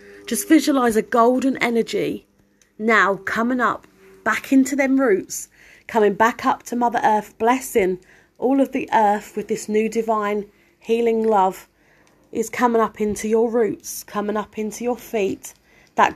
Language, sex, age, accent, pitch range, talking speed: English, female, 30-49, British, 205-235 Hz, 150 wpm